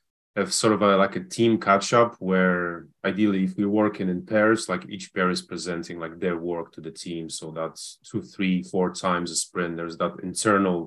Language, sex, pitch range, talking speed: English, male, 85-100 Hz, 205 wpm